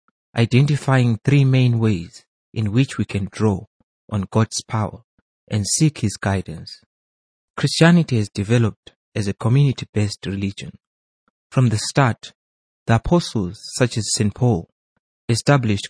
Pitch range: 100-130 Hz